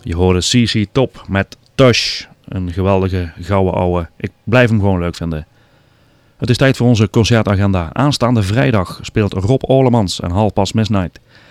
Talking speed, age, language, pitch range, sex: 160 wpm, 30-49, Dutch, 100-125 Hz, male